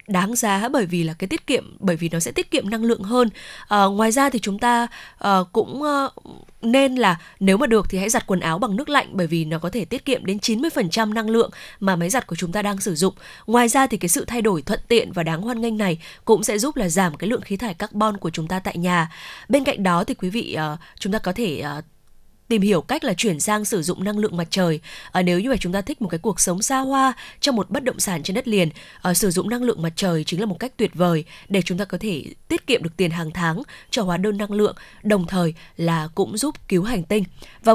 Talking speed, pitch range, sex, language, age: 275 wpm, 175-230 Hz, female, Vietnamese, 20-39